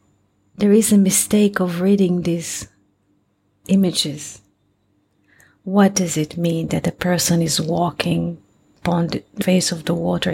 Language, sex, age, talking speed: English, female, 40-59, 135 wpm